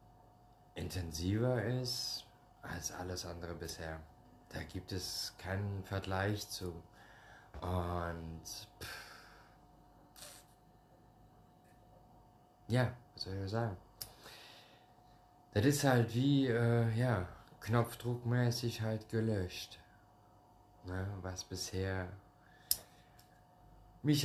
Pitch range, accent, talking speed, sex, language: 95-115 Hz, German, 85 wpm, male, German